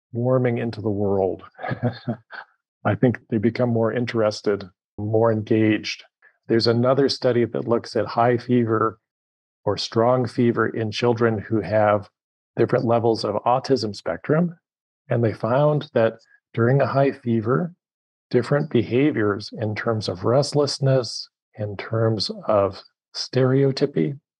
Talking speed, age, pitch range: 125 wpm, 40-59, 110-130 Hz